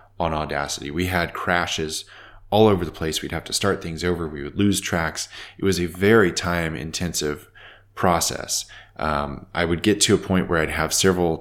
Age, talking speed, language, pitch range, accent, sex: 20-39, 195 wpm, English, 80-100 Hz, American, male